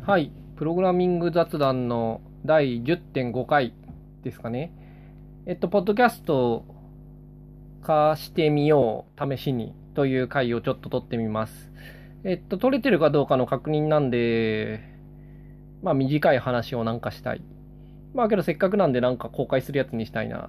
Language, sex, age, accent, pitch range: Japanese, male, 20-39, native, 125-165 Hz